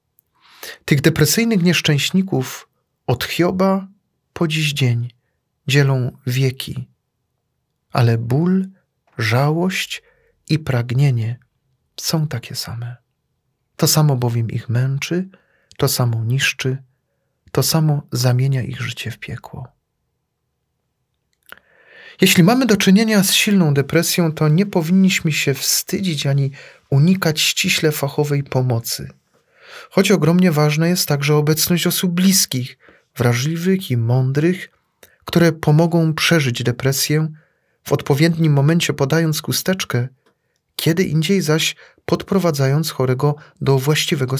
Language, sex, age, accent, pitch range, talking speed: Polish, male, 40-59, native, 135-170 Hz, 105 wpm